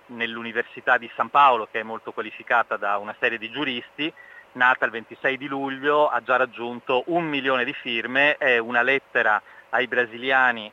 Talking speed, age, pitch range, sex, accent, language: 170 wpm, 30-49, 110-135 Hz, male, native, Italian